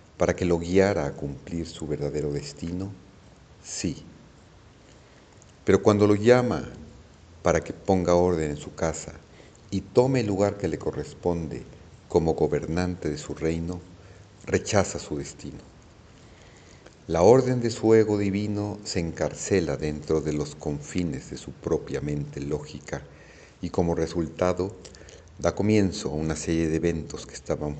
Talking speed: 140 wpm